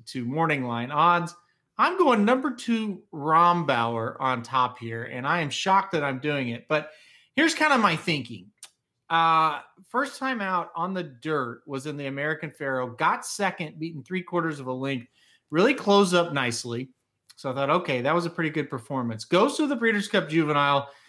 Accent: American